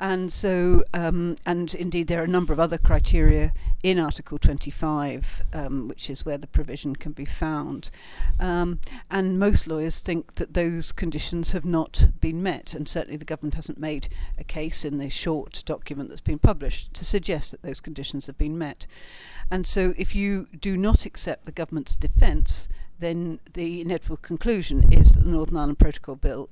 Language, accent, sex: English, British, female